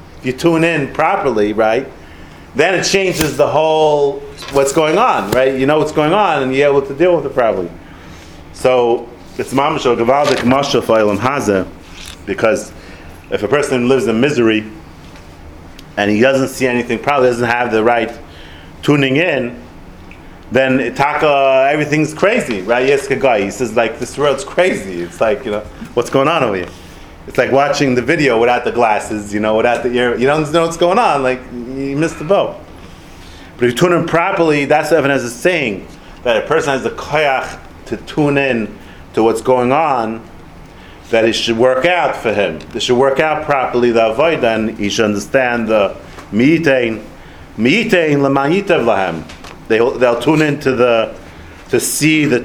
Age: 30-49